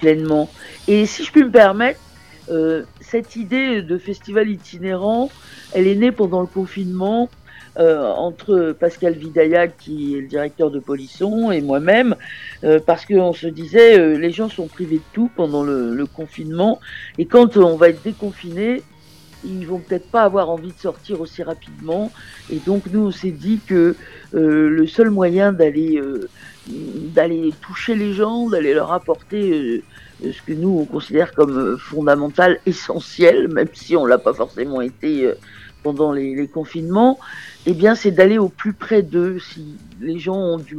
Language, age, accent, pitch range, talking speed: French, 50-69, French, 165-215 Hz, 170 wpm